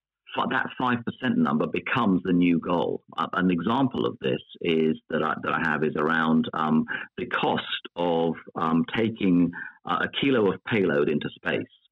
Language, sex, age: English, male, 50-69